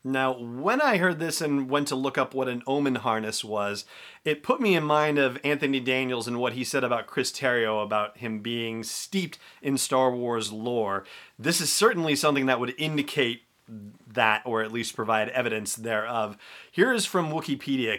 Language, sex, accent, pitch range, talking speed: English, male, American, 120-165 Hz, 185 wpm